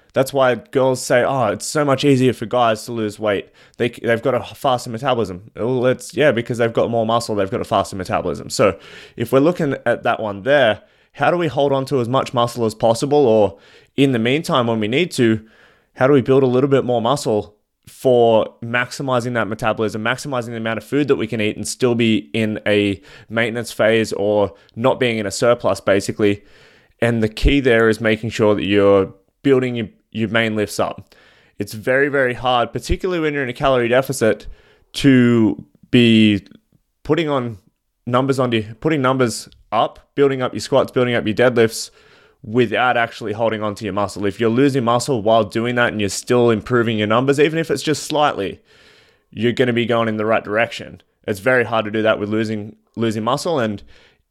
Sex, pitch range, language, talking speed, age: male, 110-130 Hz, English, 205 wpm, 20-39